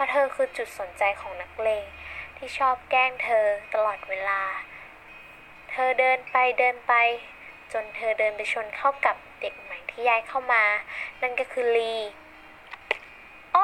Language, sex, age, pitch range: Thai, female, 10-29, 230-285 Hz